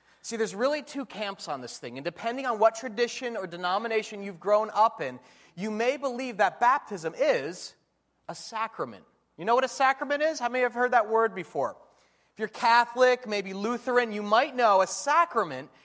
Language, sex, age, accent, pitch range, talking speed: English, male, 30-49, American, 180-250 Hz, 190 wpm